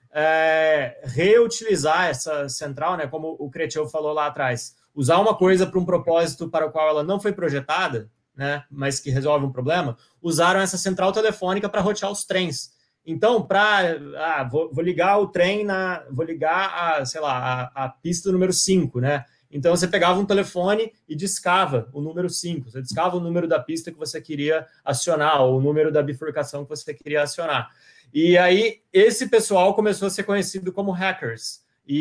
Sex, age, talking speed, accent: male, 20-39, 170 wpm, Brazilian